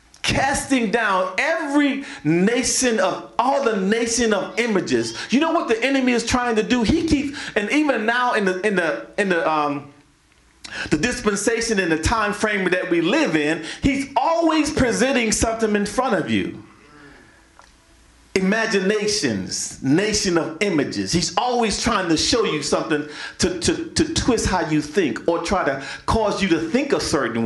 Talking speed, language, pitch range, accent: 165 wpm, English, 195-265 Hz, American